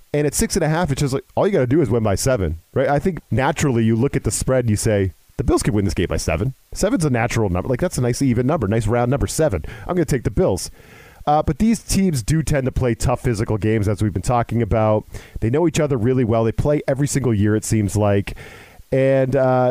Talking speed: 275 wpm